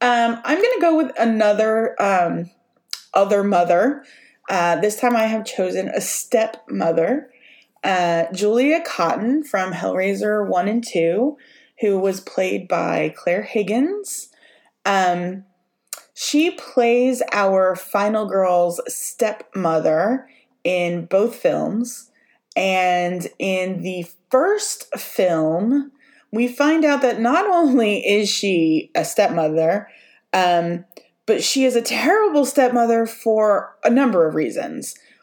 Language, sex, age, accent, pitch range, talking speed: English, female, 20-39, American, 185-255 Hz, 120 wpm